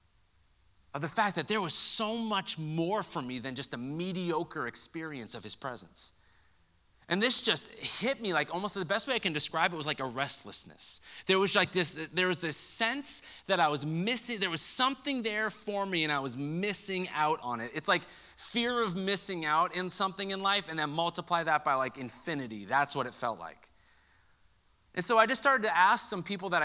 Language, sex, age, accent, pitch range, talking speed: English, male, 30-49, American, 135-205 Hz, 205 wpm